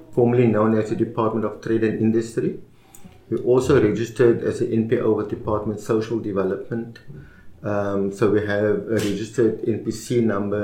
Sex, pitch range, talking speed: male, 100-115 Hz, 150 wpm